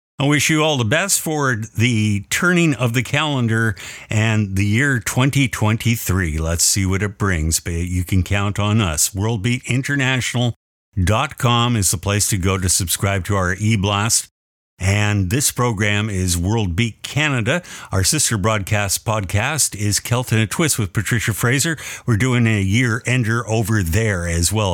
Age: 50-69